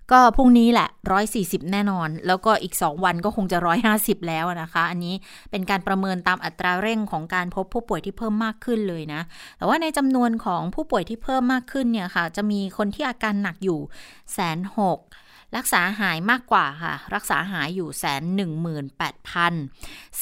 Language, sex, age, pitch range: Thai, female, 20-39, 175-225 Hz